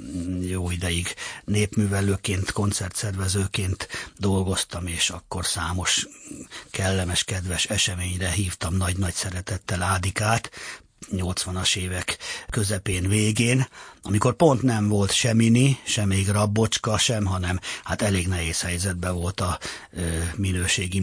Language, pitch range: Hungarian, 90-100 Hz